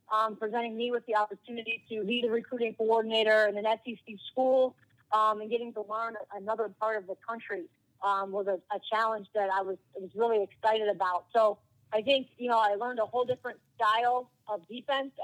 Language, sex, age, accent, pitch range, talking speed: English, female, 40-59, American, 210-240 Hz, 195 wpm